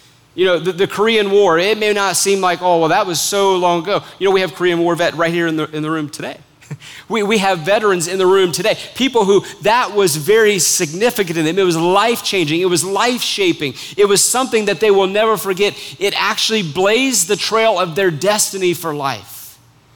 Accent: American